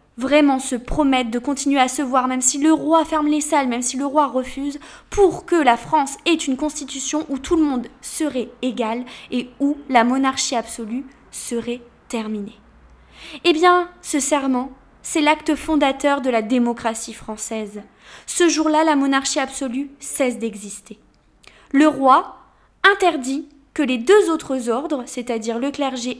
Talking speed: 160 wpm